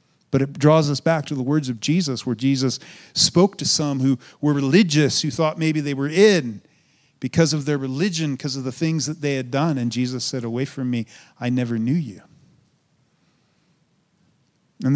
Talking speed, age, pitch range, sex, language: 190 wpm, 40-59, 125-150 Hz, male, English